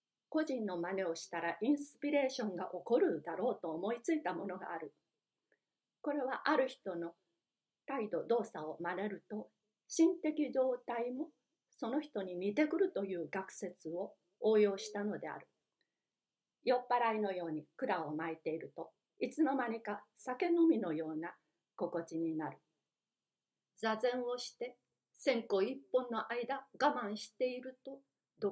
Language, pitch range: Japanese, 195-270 Hz